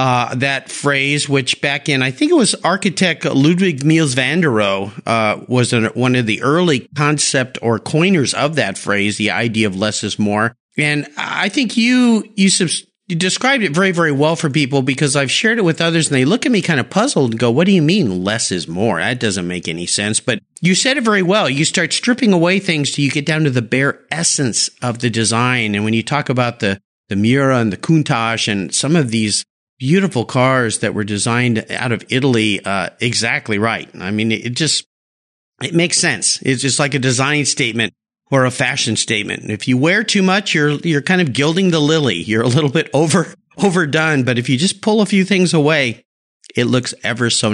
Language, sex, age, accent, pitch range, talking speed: English, male, 50-69, American, 115-165 Hz, 215 wpm